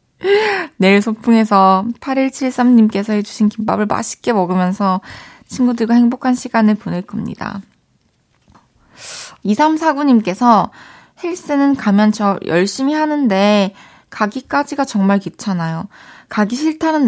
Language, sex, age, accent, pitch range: Korean, female, 20-39, native, 190-245 Hz